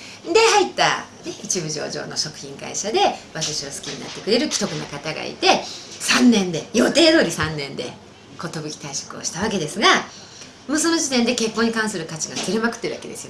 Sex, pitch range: female, 180-290 Hz